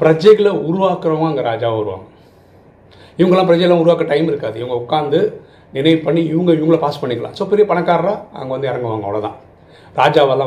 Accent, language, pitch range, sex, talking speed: native, Tamil, 135-185 Hz, male, 150 wpm